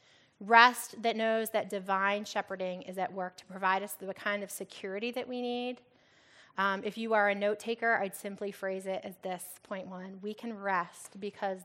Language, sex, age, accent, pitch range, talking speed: English, female, 20-39, American, 195-240 Hz, 195 wpm